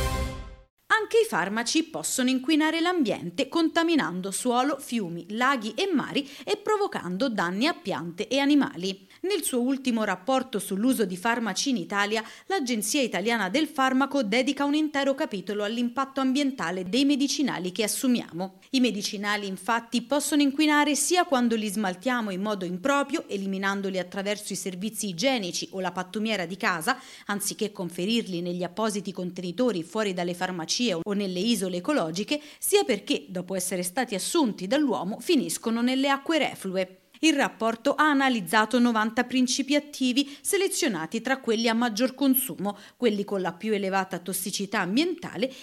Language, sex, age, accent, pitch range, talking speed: Italian, female, 30-49, native, 195-285 Hz, 140 wpm